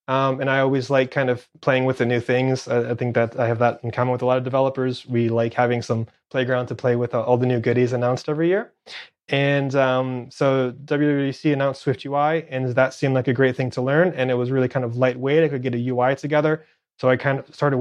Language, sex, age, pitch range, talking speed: English, male, 20-39, 125-145 Hz, 255 wpm